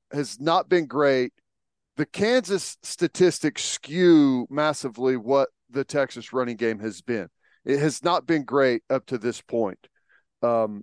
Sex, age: male, 40-59